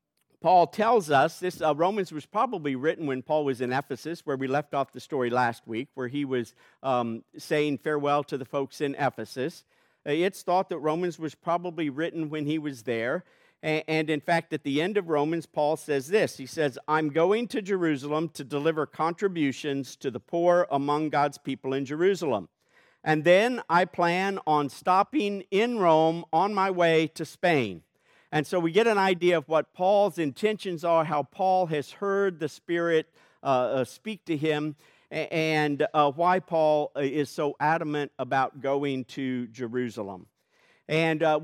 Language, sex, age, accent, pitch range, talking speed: English, male, 50-69, American, 145-185 Hz, 170 wpm